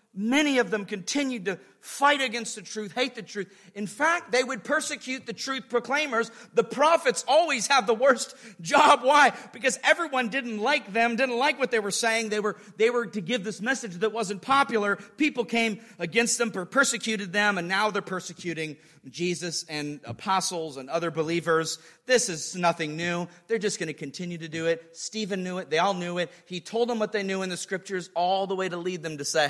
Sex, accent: male, American